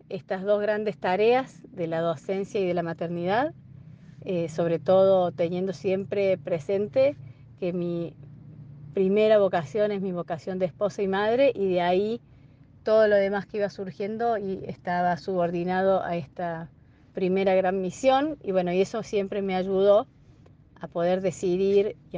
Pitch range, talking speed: 170-195 Hz, 150 wpm